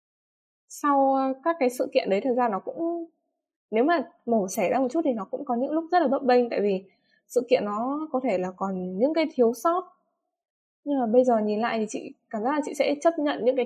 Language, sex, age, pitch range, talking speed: Vietnamese, female, 10-29, 210-275 Hz, 250 wpm